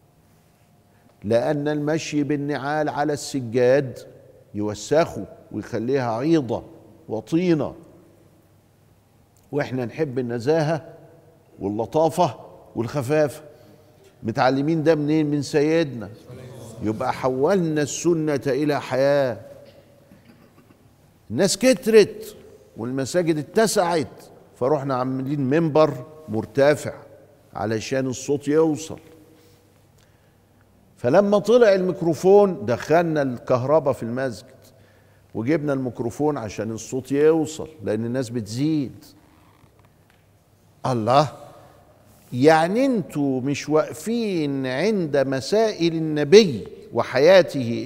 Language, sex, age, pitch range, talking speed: Arabic, male, 50-69, 125-160 Hz, 75 wpm